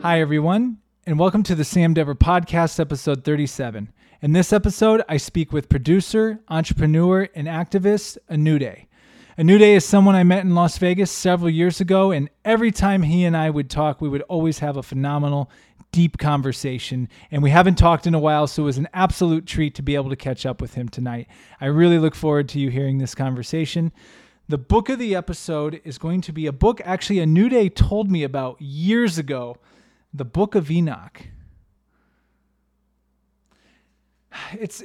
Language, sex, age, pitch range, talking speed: English, male, 20-39, 140-185 Hz, 175 wpm